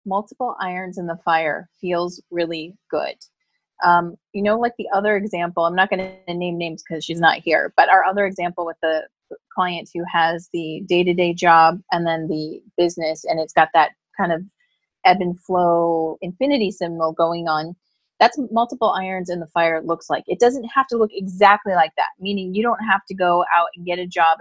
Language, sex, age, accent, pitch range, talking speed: English, female, 30-49, American, 175-215 Hz, 200 wpm